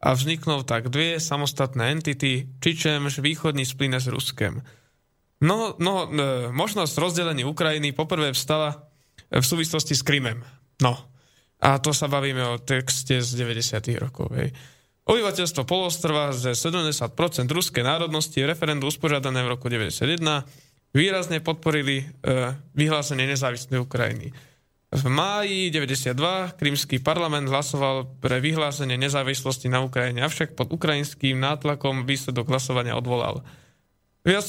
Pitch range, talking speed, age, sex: 130-155 Hz, 120 wpm, 20-39, male